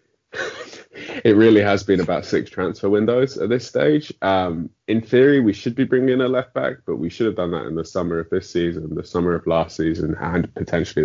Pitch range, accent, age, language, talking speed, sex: 80-100 Hz, British, 20-39, English, 225 wpm, male